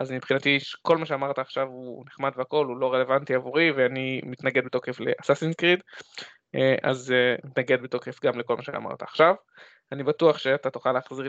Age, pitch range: 20-39, 135-165 Hz